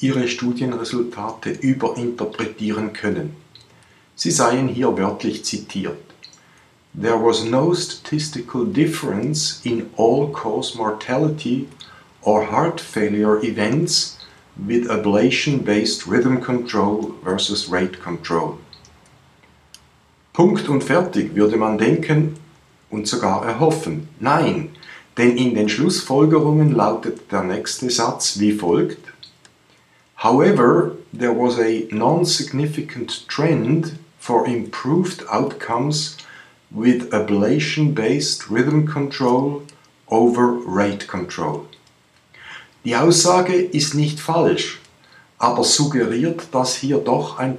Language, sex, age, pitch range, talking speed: German, male, 50-69, 110-150 Hz, 95 wpm